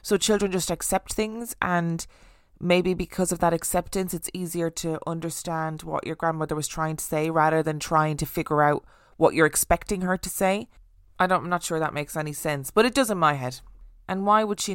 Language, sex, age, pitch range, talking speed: English, female, 20-39, 155-180 Hz, 215 wpm